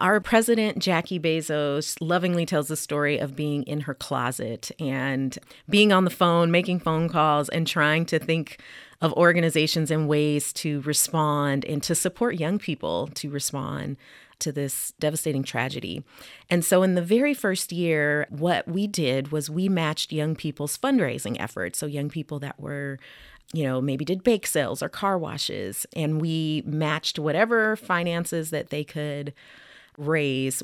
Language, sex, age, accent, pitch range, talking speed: English, female, 30-49, American, 145-180 Hz, 160 wpm